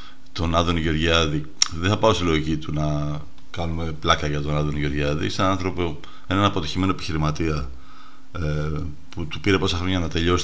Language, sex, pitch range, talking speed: Greek, male, 75-95 Hz, 160 wpm